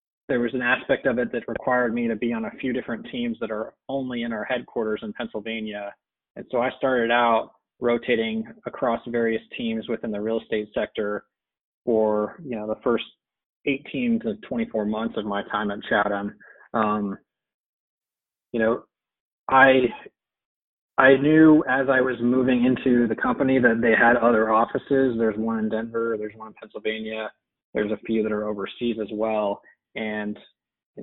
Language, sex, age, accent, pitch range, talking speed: English, male, 20-39, American, 110-130 Hz, 170 wpm